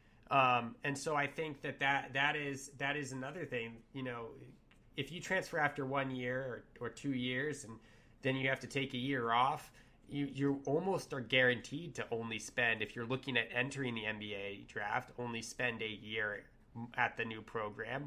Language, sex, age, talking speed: English, male, 20-39, 195 wpm